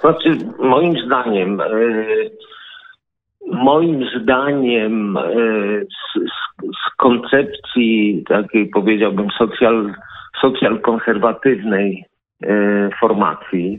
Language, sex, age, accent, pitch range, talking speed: Polish, male, 50-69, native, 105-125 Hz, 75 wpm